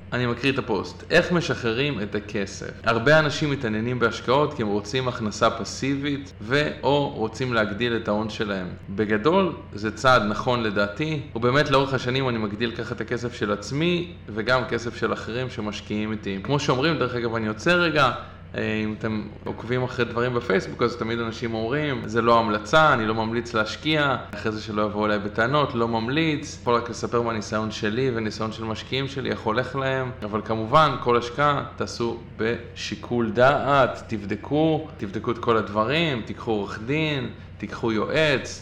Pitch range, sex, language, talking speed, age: 105-130 Hz, male, Hebrew, 165 wpm, 20-39